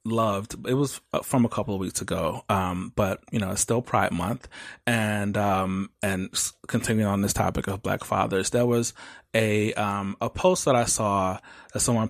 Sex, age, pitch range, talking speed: male, 20-39, 100-120 Hz, 190 wpm